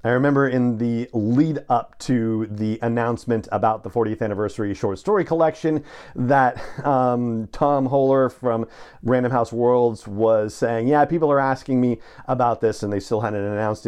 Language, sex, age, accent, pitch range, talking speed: English, male, 40-59, American, 110-135 Hz, 165 wpm